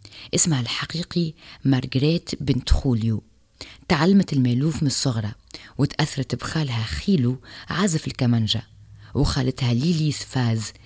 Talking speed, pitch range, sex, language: 90 wpm, 110-145 Hz, female, French